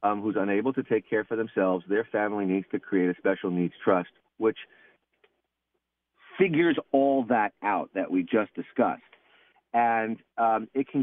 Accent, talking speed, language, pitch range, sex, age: American, 165 wpm, English, 85-105 Hz, male, 40-59